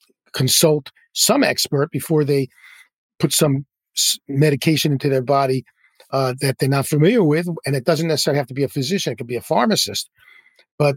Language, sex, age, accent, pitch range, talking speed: English, male, 50-69, American, 135-170 Hz, 175 wpm